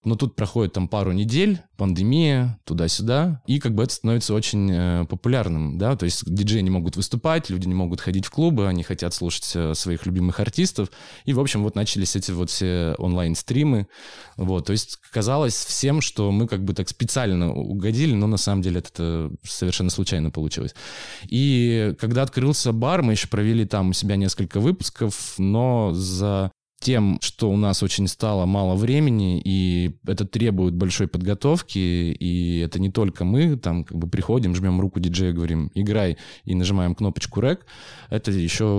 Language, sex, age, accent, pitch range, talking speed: Russian, male, 20-39, native, 90-115 Hz, 170 wpm